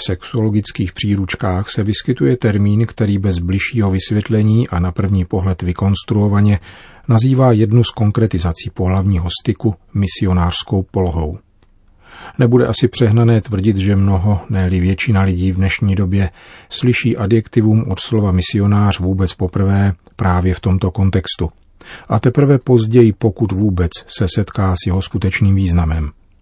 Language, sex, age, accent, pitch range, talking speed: Czech, male, 40-59, native, 95-110 Hz, 130 wpm